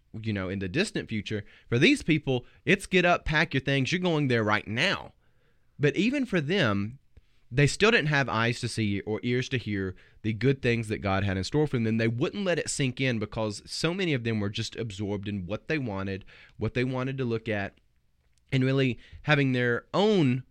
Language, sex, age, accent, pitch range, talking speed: English, male, 30-49, American, 110-145 Hz, 220 wpm